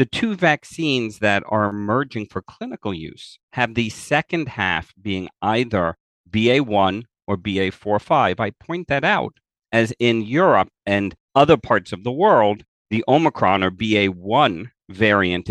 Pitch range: 95-120 Hz